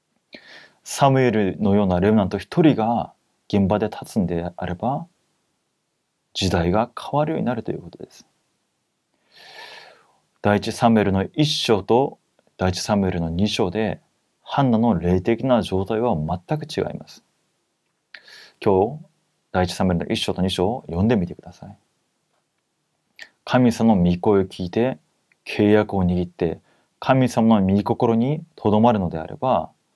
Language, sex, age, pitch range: Korean, male, 30-49, 95-120 Hz